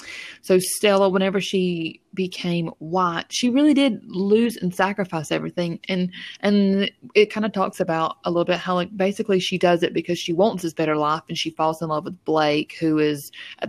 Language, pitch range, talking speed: English, 160-195 Hz, 195 wpm